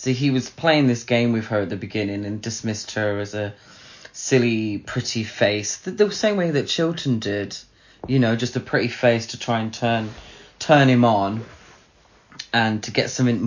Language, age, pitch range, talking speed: English, 30-49, 105-125 Hz, 190 wpm